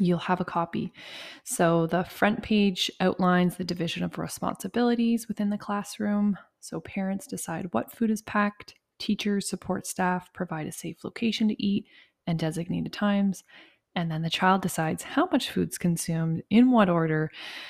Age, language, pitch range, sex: 20-39, English, 170-205 Hz, female